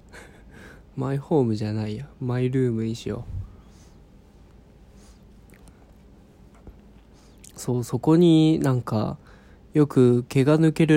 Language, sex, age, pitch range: Japanese, male, 20-39, 110-150 Hz